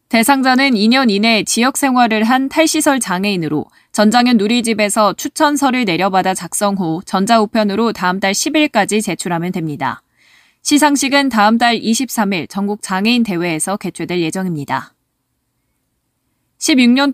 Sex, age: female, 20-39